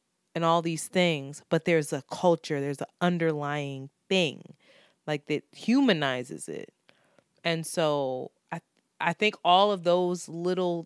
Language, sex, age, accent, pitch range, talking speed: English, female, 20-39, American, 145-175 Hz, 145 wpm